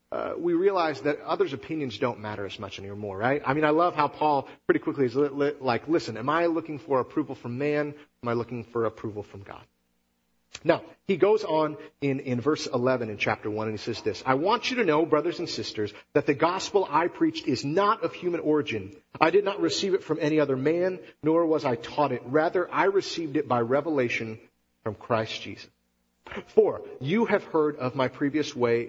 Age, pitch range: 40-59, 115-165 Hz